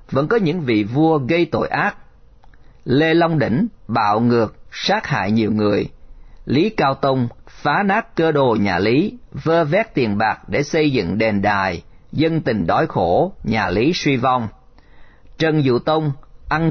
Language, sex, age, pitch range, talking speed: Vietnamese, male, 50-69, 120-160 Hz, 170 wpm